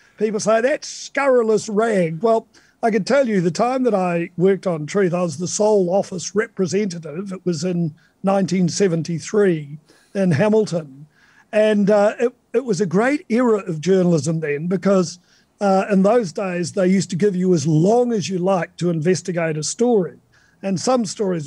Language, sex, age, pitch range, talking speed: English, male, 50-69, 175-210 Hz, 175 wpm